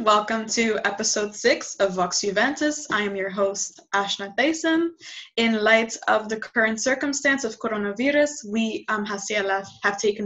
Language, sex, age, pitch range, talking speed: English, female, 10-29, 205-265 Hz, 150 wpm